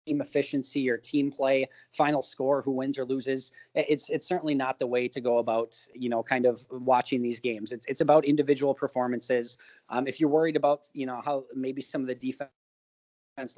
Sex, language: male, English